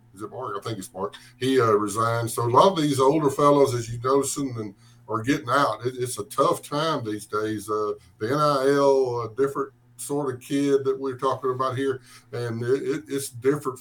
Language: English